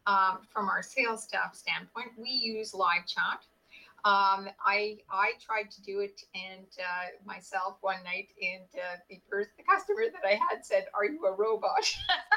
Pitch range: 190-275 Hz